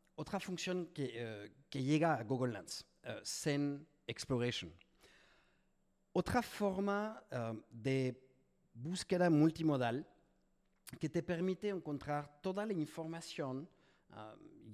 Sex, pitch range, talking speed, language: male, 125-170 Hz, 105 wpm, Spanish